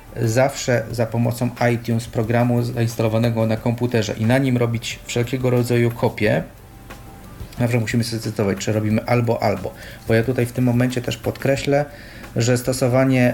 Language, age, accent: Polish, 40-59, native